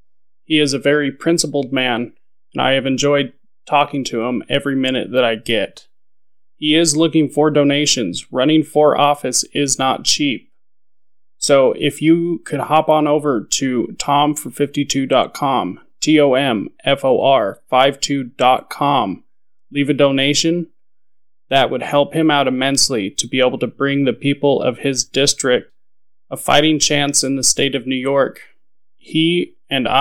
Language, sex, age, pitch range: English, male, 20-39, 130-150 Hz